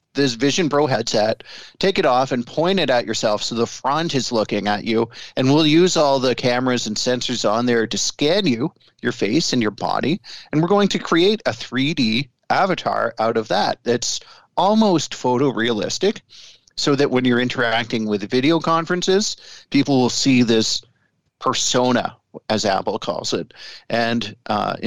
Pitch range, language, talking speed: 115-145 Hz, English, 170 wpm